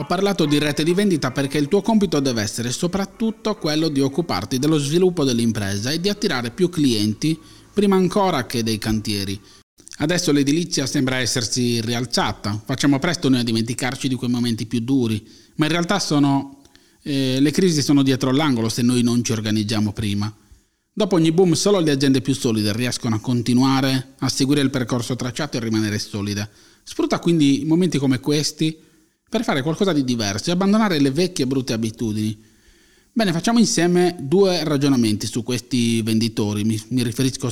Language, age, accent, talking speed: Italian, 30-49, native, 170 wpm